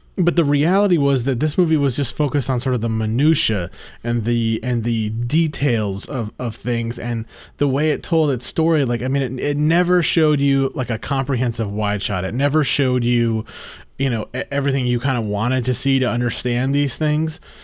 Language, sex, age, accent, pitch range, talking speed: English, male, 30-49, American, 115-140 Hz, 205 wpm